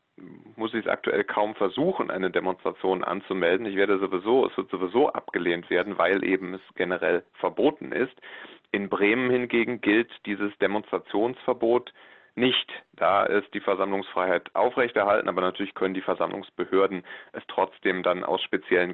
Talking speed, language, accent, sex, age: 145 wpm, German, German, male, 30-49